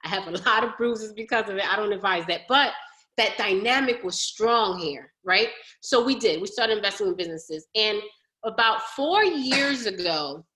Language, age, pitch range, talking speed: English, 30-49, 215-310 Hz, 190 wpm